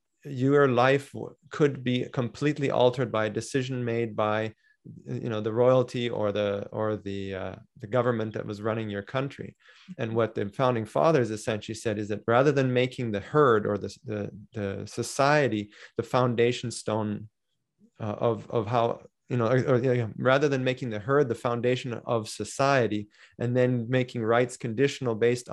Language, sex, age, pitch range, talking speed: English, male, 30-49, 110-130 Hz, 175 wpm